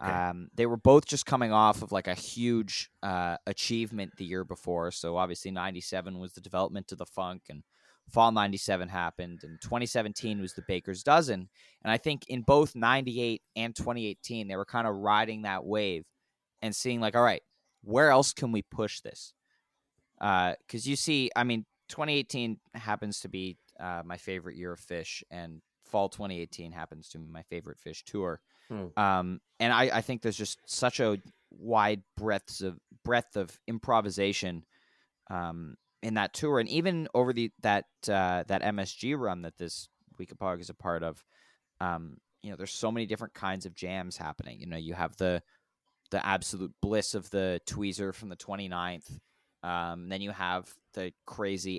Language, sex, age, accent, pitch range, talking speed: English, male, 20-39, American, 90-110 Hz, 180 wpm